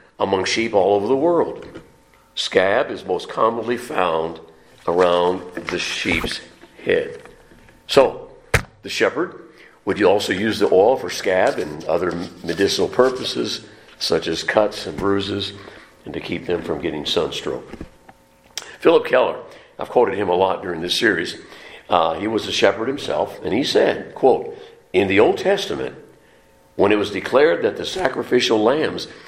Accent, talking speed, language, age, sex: American, 150 wpm, English, 60-79, male